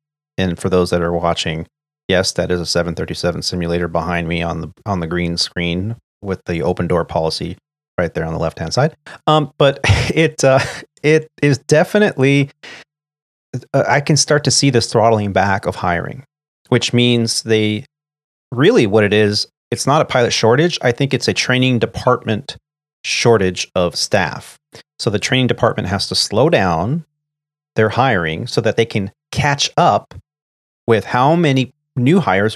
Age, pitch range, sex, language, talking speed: 30-49, 95-140 Hz, male, English, 170 wpm